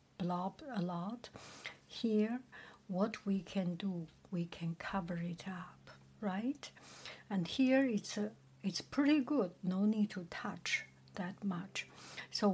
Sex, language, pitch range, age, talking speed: female, English, 170-225 Hz, 60-79, 135 wpm